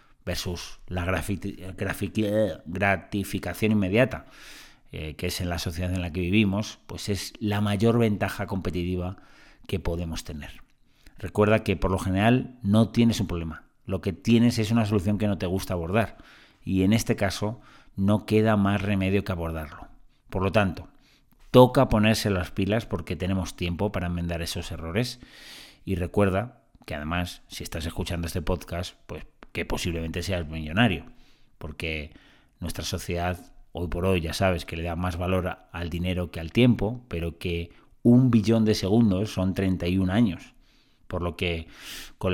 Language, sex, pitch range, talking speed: Spanish, male, 85-105 Hz, 160 wpm